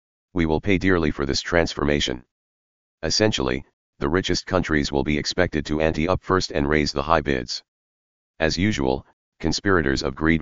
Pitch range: 70-85 Hz